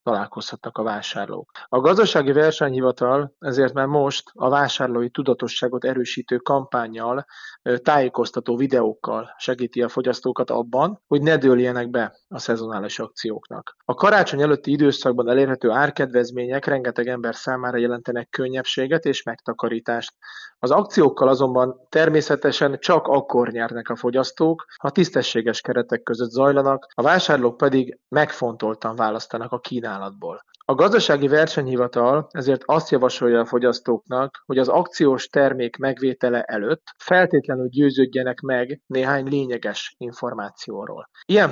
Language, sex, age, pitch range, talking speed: Hungarian, male, 30-49, 120-140 Hz, 120 wpm